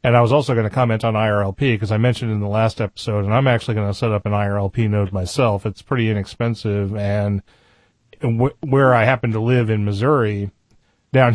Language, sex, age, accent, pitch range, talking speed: English, male, 30-49, American, 100-120 Hz, 210 wpm